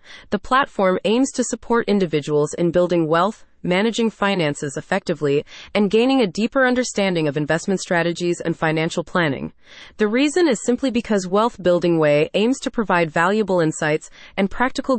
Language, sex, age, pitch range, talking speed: English, female, 30-49, 170-230 Hz, 150 wpm